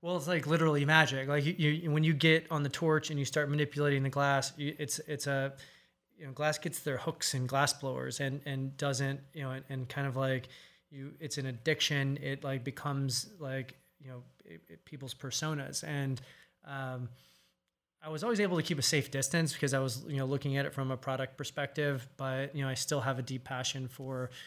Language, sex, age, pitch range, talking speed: English, male, 20-39, 130-145 Hz, 215 wpm